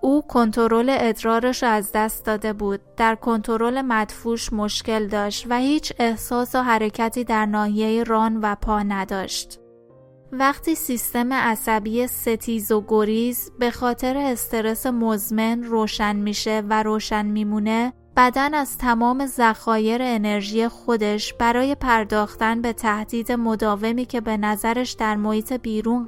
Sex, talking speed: female, 125 wpm